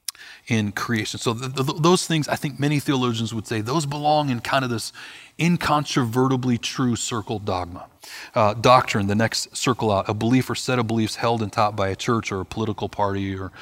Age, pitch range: 30-49, 105-135 Hz